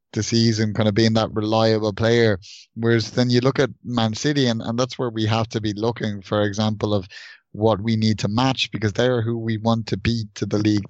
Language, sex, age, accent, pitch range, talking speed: English, male, 20-39, Irish, 110-120 Hz, 230 wpm